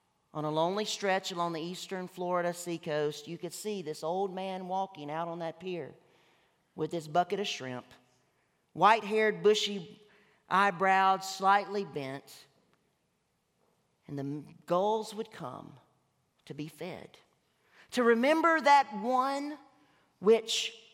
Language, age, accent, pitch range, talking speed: English, 40-59, American, 170-220 Hz, 125 wpm